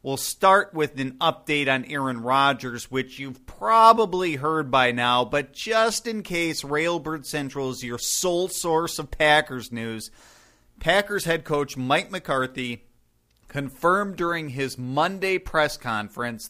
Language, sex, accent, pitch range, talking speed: English, male, American, 125-160 Hz, 140 wpm